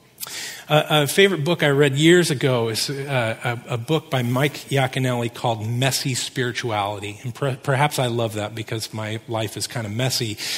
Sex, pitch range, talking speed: male, 130-165 Hz, 180 wpm